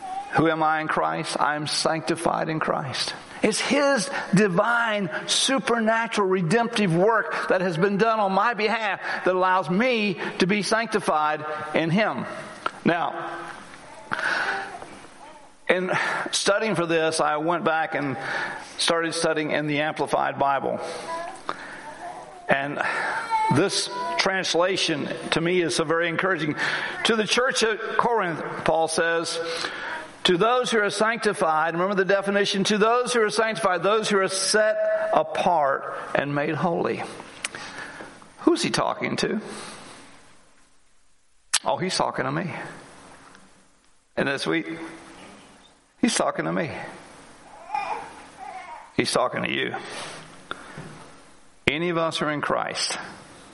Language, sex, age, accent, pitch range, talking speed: English, male, 60-79, American, 165-225 Hz, 125 wpm